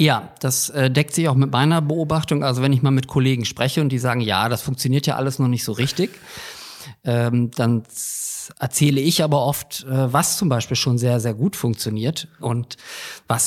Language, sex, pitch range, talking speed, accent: German, male, 120-150 Hz, 185 wpm, German